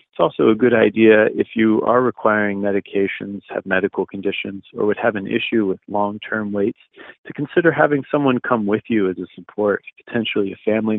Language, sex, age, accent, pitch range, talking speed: English, male, 40-59, American, 105-130 Hz, 185 wpm